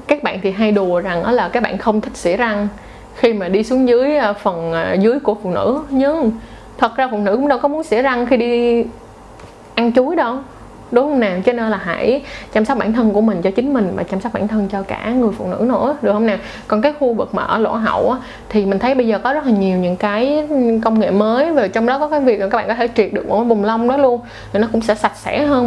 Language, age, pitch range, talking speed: Vietnamese, 20-39, 195-255 Hz, 275 wpm